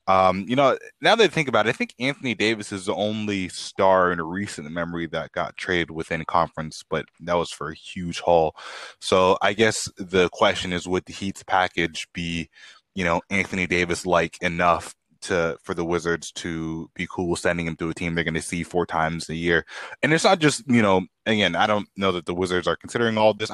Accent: American